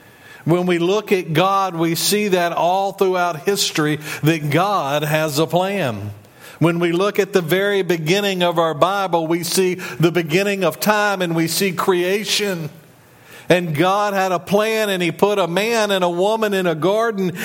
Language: English